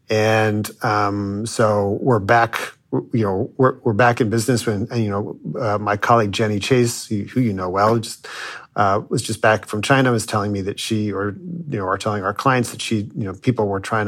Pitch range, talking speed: 100-120 Hz, 215 wpm